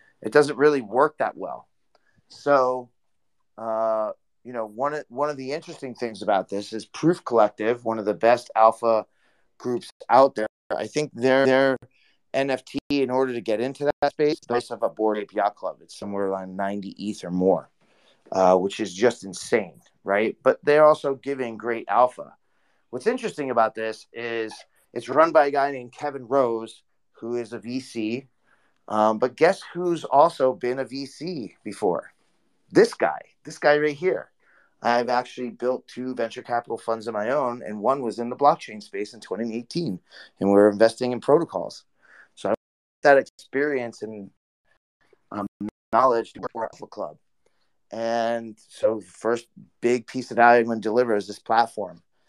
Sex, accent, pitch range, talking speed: male, American, 110-135 Hz, 175 wpm